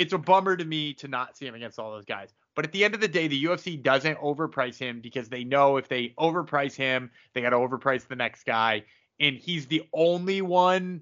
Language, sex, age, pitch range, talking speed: English, male, 20-39, 125-175 Hz, 240 wpm